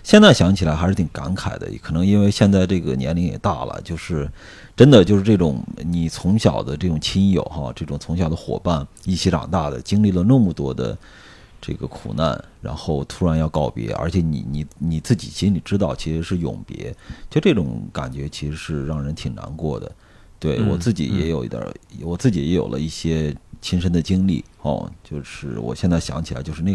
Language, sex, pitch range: Chinese, male, 75-95 Hz